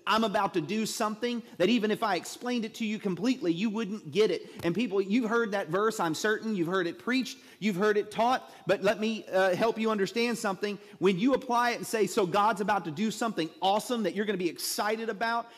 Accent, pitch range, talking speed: American, 190-230 Hz, 240 wpm